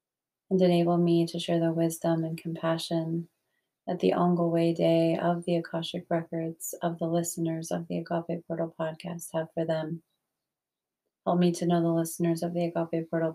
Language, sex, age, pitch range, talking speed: English, female, 30-49, 165-185 Hz, 175 wpm